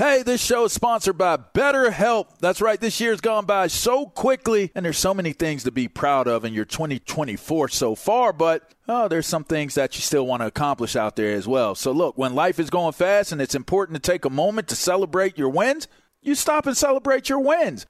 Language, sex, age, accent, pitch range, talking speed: English, male, 40-59, American, 150-210 Hz, 230 wpm